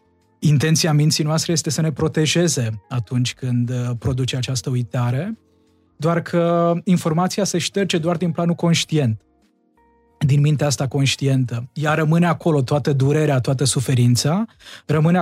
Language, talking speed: Romanian, 130 wpm